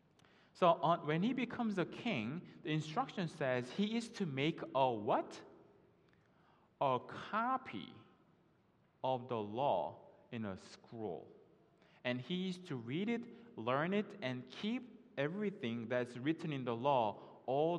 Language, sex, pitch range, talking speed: English, male, 125-185 Hz, 135 wpm